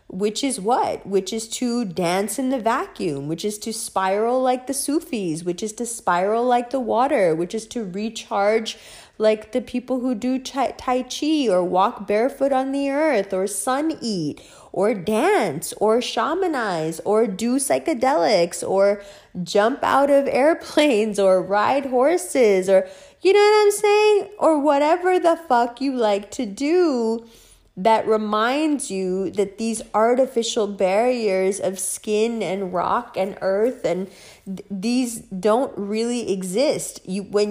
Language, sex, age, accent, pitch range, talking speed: English, female, 20-39, American, 185-255 Hz, 150 wpm